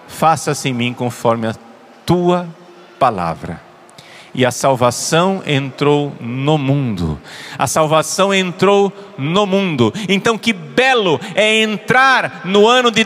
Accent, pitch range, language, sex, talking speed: Brazilian, 140-230 Hz, Portuguese, male, 120 wpm